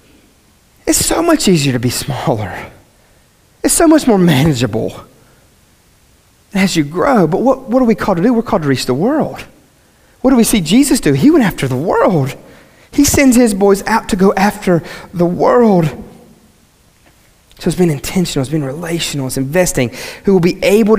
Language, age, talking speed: English, 30-49, 180 wpm